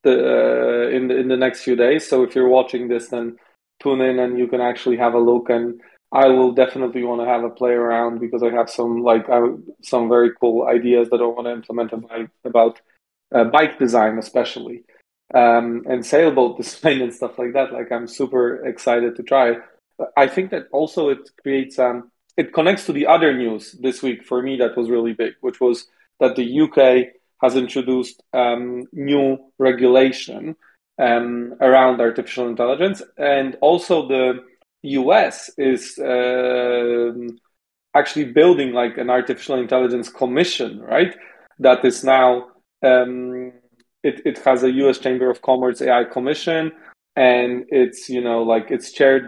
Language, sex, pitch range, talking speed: English, male, 120-130 Hz, 170 wpm